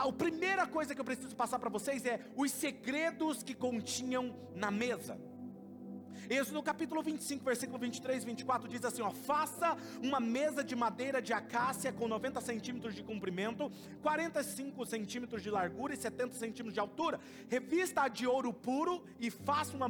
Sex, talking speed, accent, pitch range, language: male, 165 wpm, Brazilian, 230-280 Hz, Portuguese